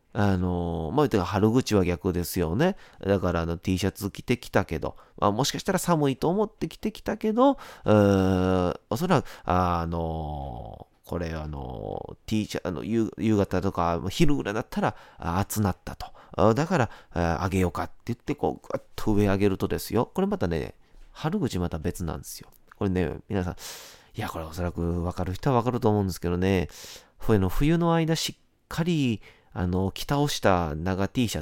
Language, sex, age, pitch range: Japanese, male, 30-49, 85-125 Hz